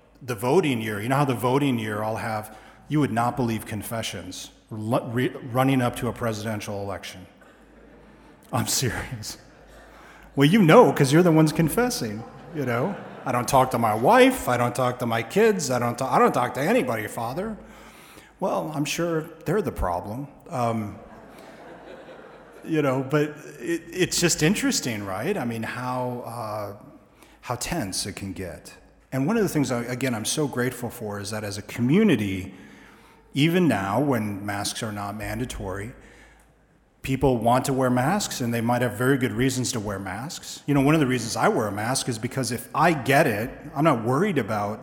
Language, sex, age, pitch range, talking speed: English, male, 40-59, 110-140 Hz, 180 wpm